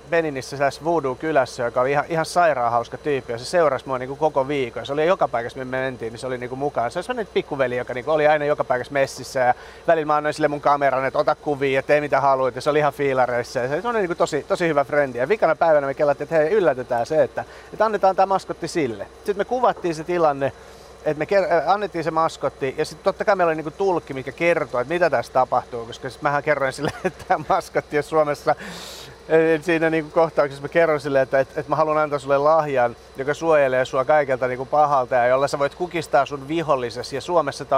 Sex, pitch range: male, 135-175 Hz